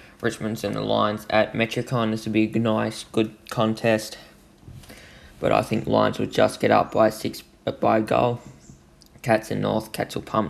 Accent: Australian